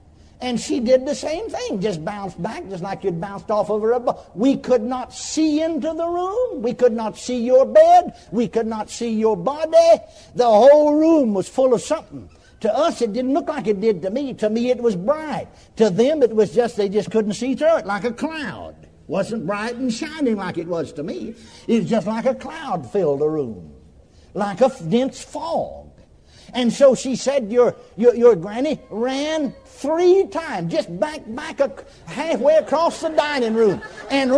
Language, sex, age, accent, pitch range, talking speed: English, male, 60-79, American, 215-310 Hz, 200 wpm